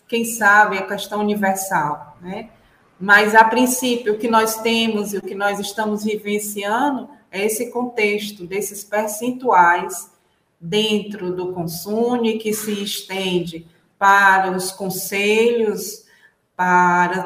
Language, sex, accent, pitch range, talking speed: Portuguese, female, Brazilian, 190-225 Hz, 120 wpm